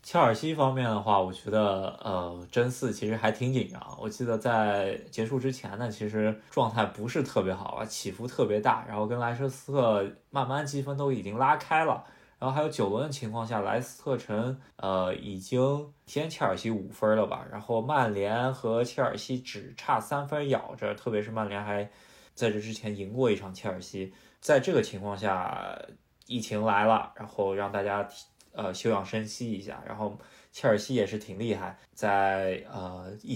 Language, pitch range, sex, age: Chinese, 100-125 Hz, male, 20-39